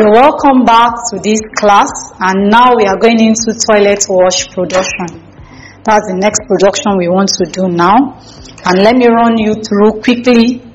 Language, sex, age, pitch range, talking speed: English, female, 30-49, 190-225 Hz, 165 wpm